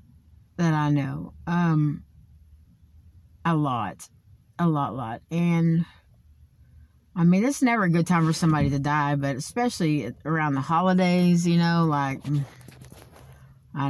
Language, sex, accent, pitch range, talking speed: English, female, American, 135-180 Hz, 130 wpm